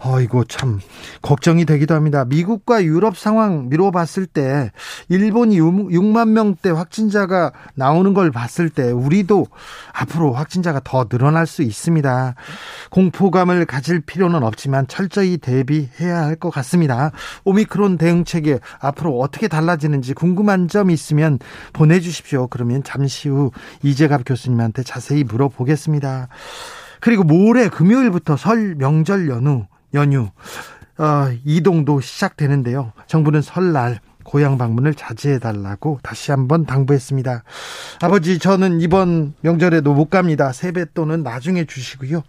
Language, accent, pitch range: Korean, native, 135-180 Hz